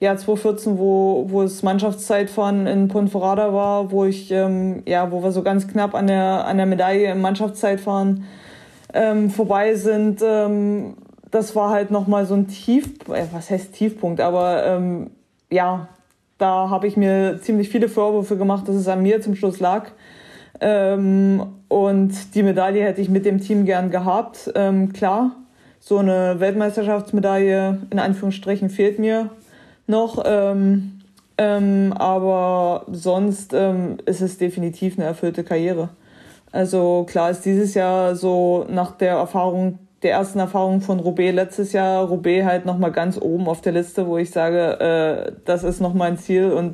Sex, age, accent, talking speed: female, 20-39, German, 160 wpm